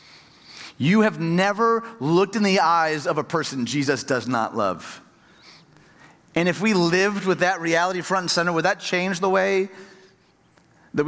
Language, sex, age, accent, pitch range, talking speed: English, male, 30-49, American, 135-185 Hz, 165 wpm